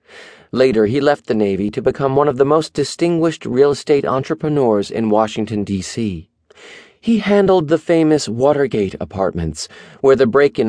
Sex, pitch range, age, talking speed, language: male, 100-140 Hz, 40-59, 150 wpm, English